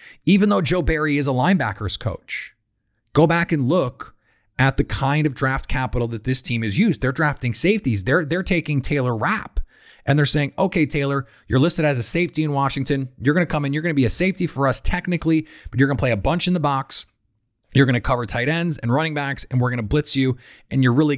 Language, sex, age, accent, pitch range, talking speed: English, male, 30-49, American, 115-150 Hz, 240 wpm